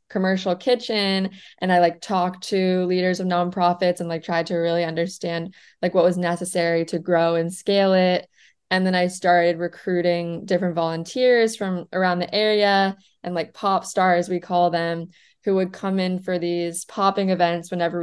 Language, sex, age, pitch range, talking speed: English, female, 20-39, 175-205 Hz, 175 wpm